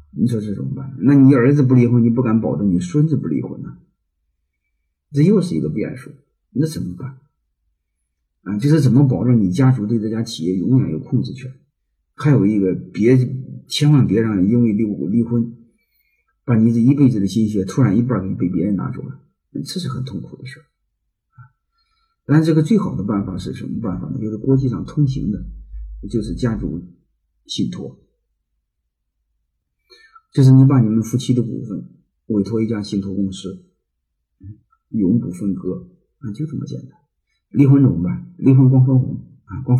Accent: native